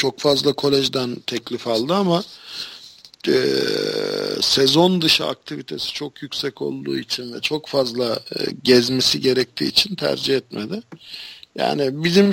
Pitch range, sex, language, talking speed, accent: 140-185 Hz, male, Turkish, 120 wpm, native